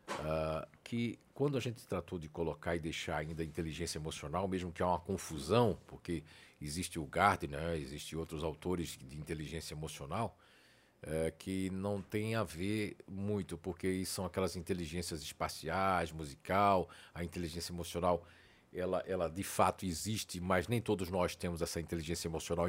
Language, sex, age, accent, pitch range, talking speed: Portuguese, male, 50-69, Brazilian, 80-100 Hz, 155 wpm